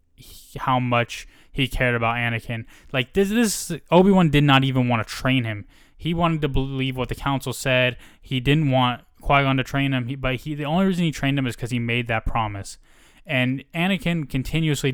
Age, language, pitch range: 10-29, English, 115-140 Hz